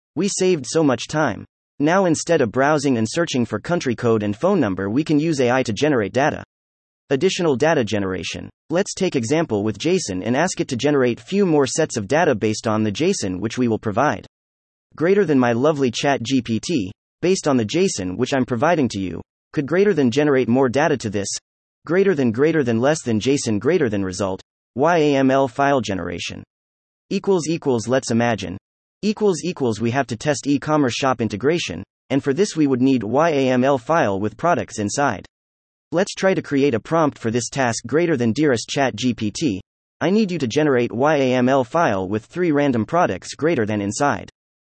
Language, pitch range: English, 110-150 Hz